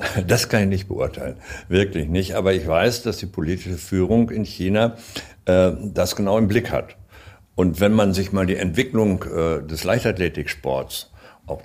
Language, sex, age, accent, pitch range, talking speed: German, male, 60-79, German, 85-105 Hz, 170 wpm